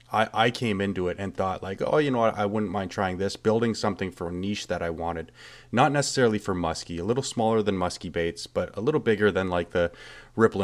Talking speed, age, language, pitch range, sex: 235 wpm, 30-49, English, 95-120 Hz, male